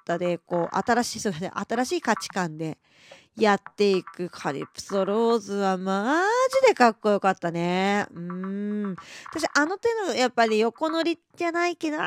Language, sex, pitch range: Japanese, female, 180-275 Hz